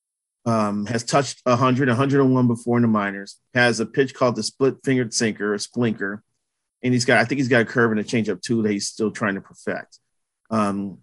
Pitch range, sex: 110-135 Hz, male